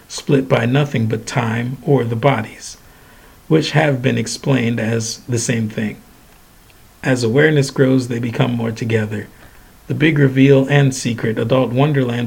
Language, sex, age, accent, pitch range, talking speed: English, male, 50-69, American, 115-135 Hz, 145 wpm